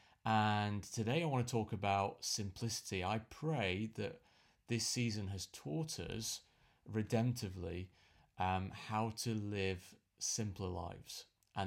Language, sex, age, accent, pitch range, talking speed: English, male, 30-49, British, 95-110 Hz, 125 wpm